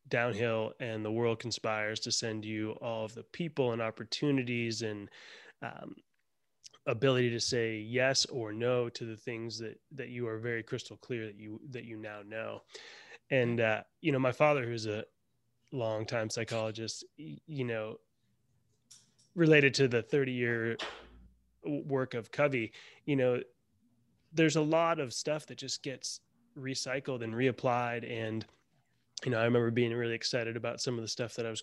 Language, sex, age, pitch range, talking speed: English, male, 20-39, 115-145 Hz, 165 wpm